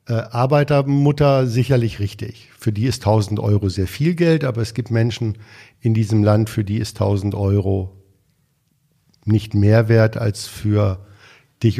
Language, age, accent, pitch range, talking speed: German, 50-69, German, 110-140 Hz, 155 wpm